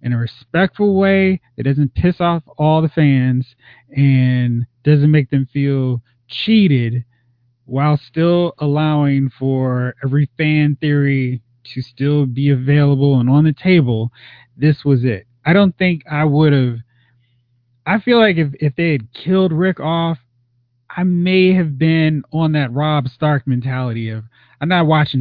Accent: American